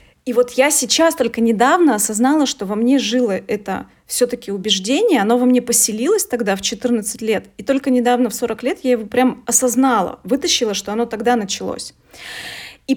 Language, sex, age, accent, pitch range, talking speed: Russian, female, 20-39, native, 210-250 Hz, 180 wpm